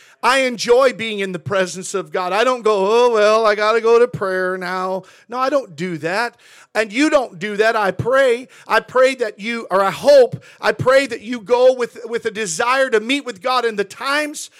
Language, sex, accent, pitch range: English, male, American, 220-260 Hz